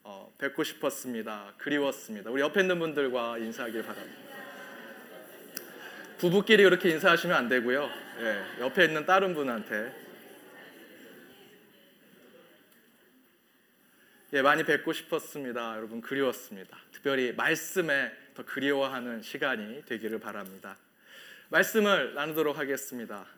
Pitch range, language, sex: 135-180 Hz, Korean, male